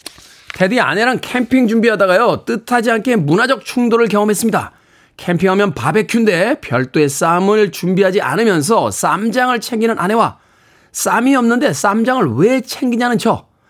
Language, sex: Korean, male